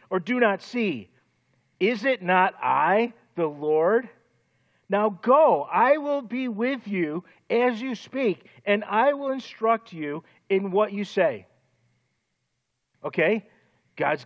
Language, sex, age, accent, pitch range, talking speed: English, male, 50-69, American, 170-235 Hz, 130 wpm